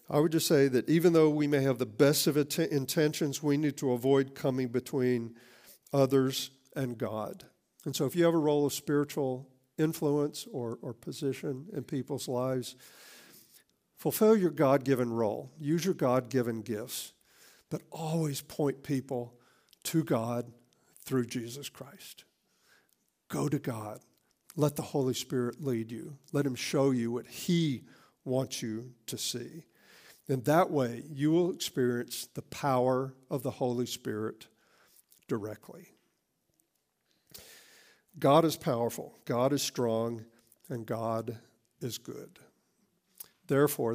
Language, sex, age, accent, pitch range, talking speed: English, male, 50-69, American, 120-145 Hz, 135 wpm